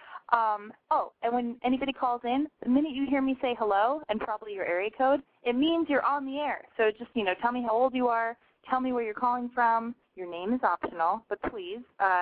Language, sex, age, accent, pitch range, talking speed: English, female, 20-39, American, 180-255 Hz, 230 wpm